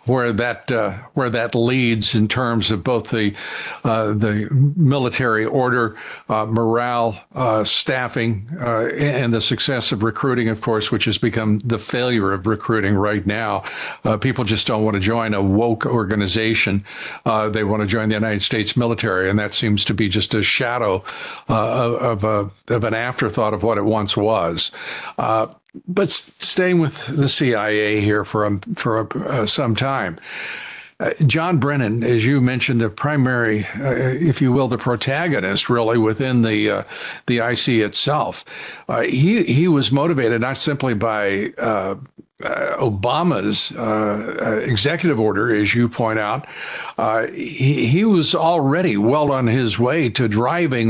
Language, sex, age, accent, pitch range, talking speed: English, male, 60-79, American, 110-140 Hz, 165 wpm